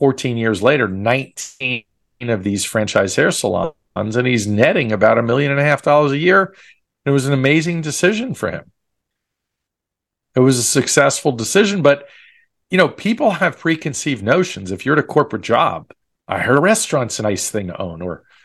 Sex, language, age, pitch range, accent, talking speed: male, English, 50-69, 105-150 Hz, American, 180 wpm